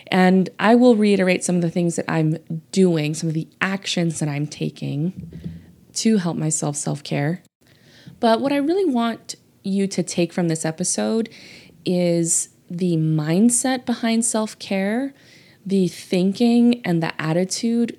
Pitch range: 155-195 Hz